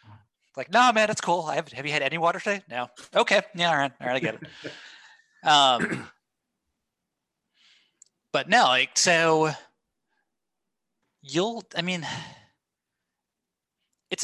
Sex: male